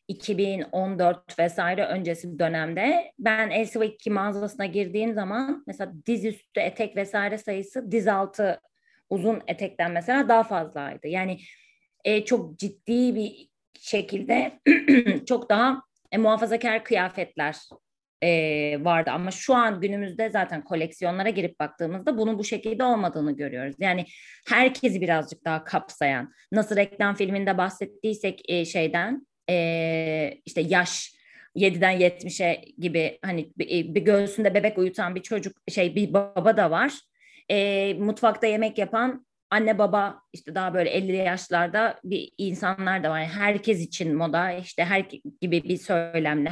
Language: Turkish